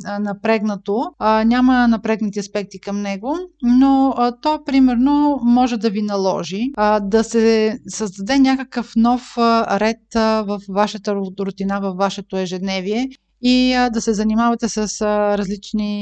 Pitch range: 200-240 Hz